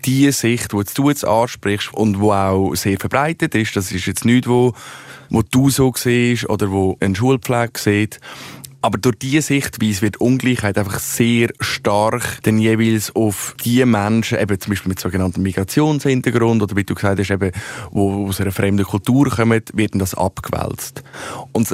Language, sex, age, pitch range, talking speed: German, male, 20-39, 100-120 Hz, 165 wpm